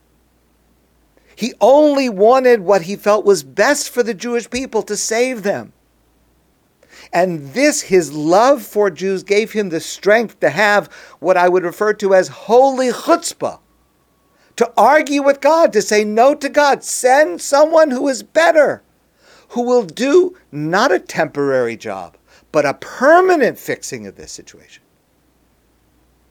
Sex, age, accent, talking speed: male, 50-69, American, 145 wpm